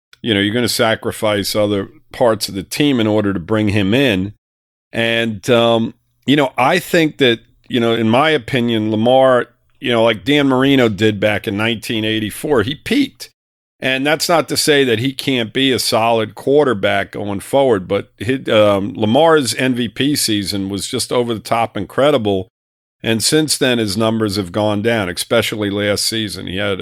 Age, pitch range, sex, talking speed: 50-69, 100-125 Hz, male, 175 wpm